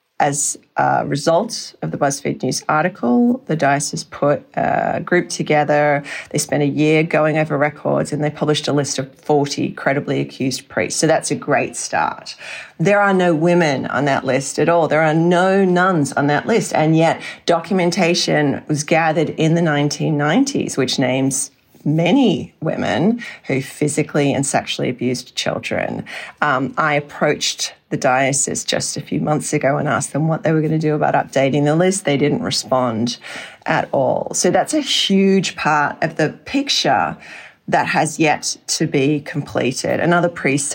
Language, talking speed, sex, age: English, 170 wpm, female, 40-59